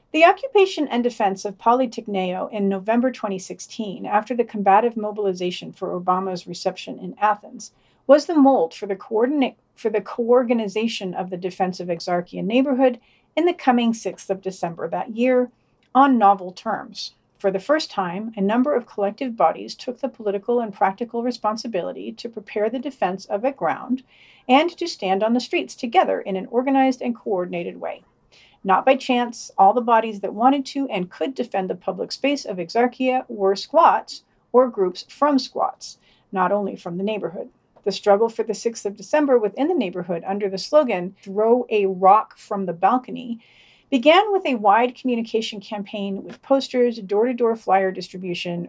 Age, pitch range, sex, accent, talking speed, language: 50-69, 195-255 Hz, female, American, 170 wpm, English